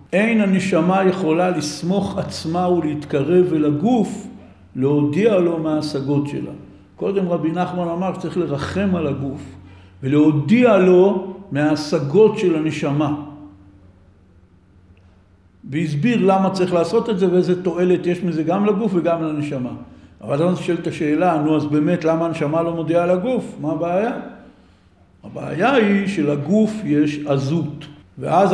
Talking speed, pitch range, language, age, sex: 130 wpm, 150-195 Hz, Hebrew, 60-79, male